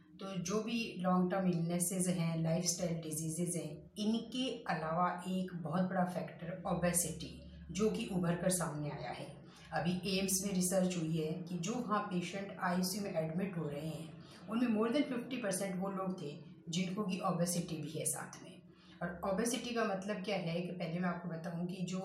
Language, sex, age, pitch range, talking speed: Hindi, female, 30-49, 165-195 Hz, 180 wpm